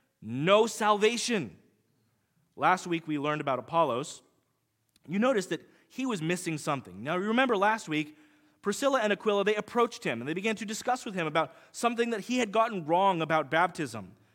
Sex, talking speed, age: male, 175 wpm, 30-49